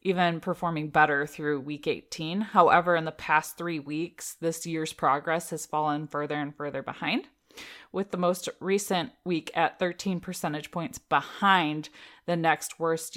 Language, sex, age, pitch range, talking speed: English, female, 20-39, 155-185 Hz, 155 wpm